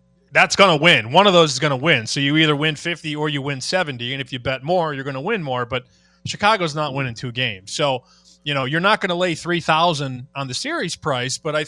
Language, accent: English, American